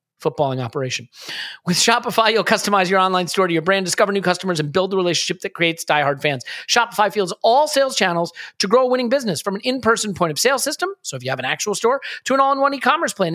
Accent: American